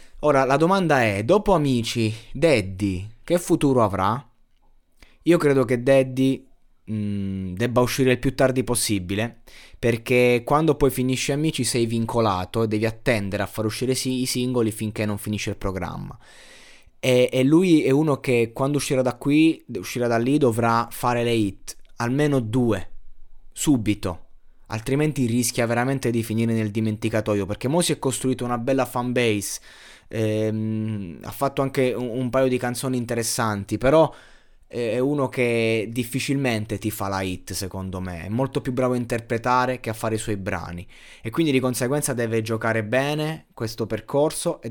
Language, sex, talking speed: Italian, male, 160 wpm